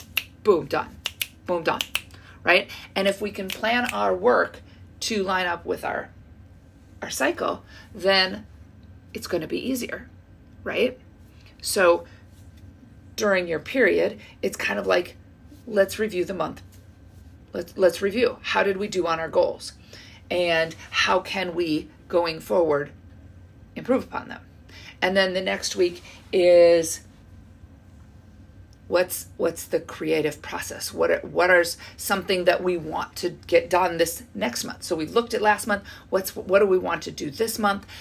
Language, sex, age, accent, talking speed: English, female, 40-59, American, 150 wpm